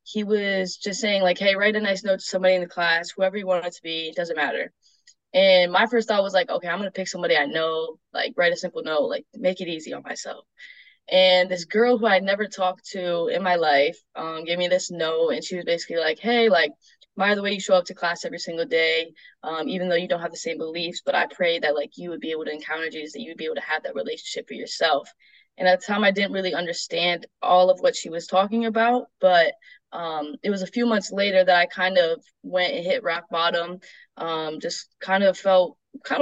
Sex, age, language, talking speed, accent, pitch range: female, 10-29, English, 255 wpm, American, 170-205 Hz